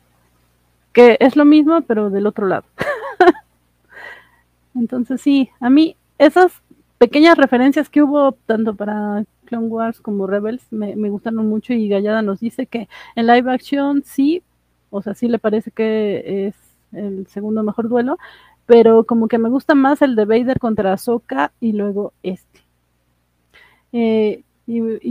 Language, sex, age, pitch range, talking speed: Spanish, female, 40-59, 210-255 Hz, 150 wpm